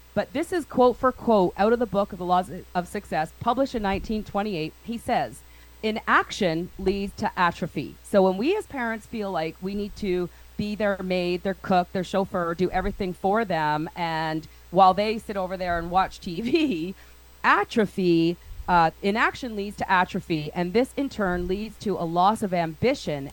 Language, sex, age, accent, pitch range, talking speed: English, female, 40-59, American, 175-230 Hz, 180 wpm